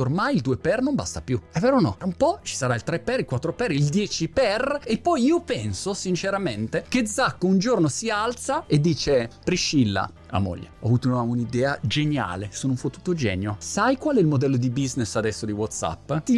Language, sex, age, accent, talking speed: Italian, male, 30-49, native, 215 wpm